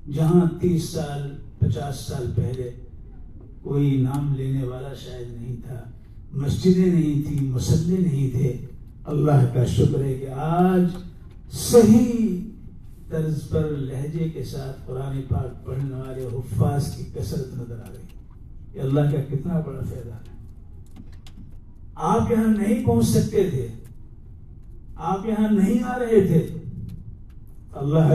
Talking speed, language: 115 wpm, English